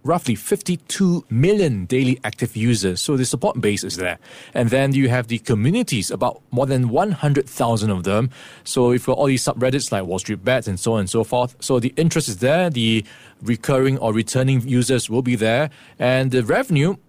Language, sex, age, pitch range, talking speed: English, male, 20-39, 120-155 Hz, 195 wpm